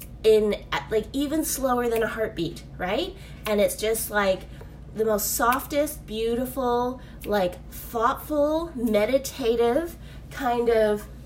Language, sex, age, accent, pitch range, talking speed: English, female, 20-39, American, 200-250 Hz, 110 wpm